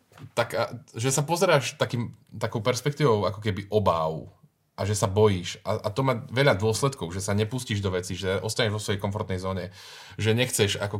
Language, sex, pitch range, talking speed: Slovak, male, 100-120 Hz, 185 wpm